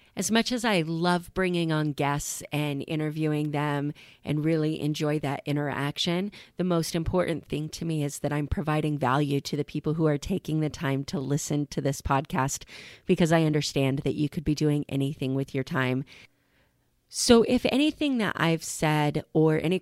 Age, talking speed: 30-49, 180 wpm